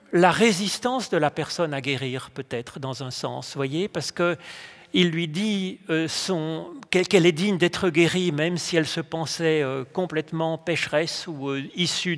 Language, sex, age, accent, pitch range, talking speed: French, male, 40-59, French, 150-195 Hz, 155 wpm